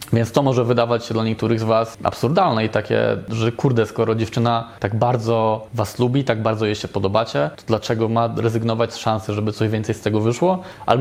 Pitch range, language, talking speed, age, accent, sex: 105-125 Hz, Polish, 205 wpm, 20-39, native, male